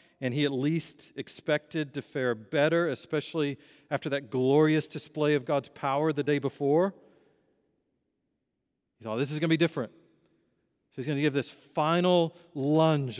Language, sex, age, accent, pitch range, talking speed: English, male, 40-59, American, 120-155 Hz, 160 wpm